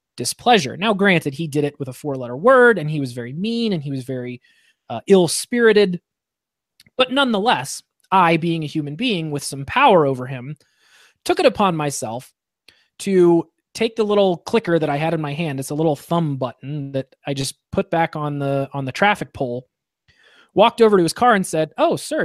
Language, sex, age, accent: English, male, 20-39, American